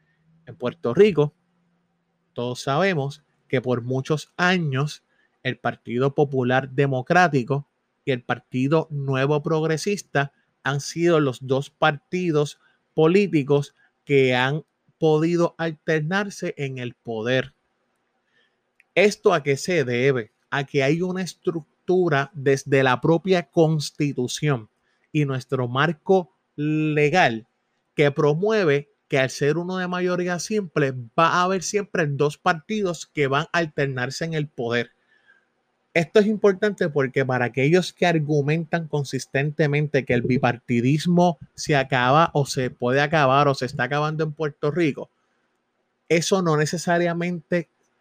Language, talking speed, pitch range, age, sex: Spanish, 120 wpm, 135-175 Hz, 30-49, male